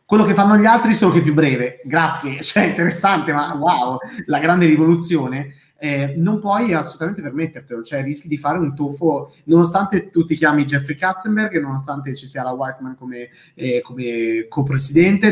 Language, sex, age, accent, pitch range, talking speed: Italian, male, 20-39, native, 130-165 Hz, 170 wpm